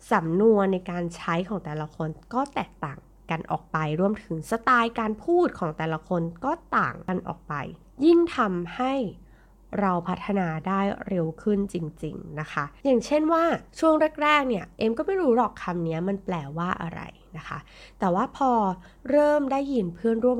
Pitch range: 175-245 Hz